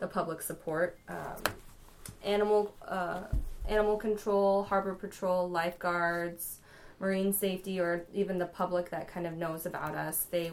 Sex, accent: female, American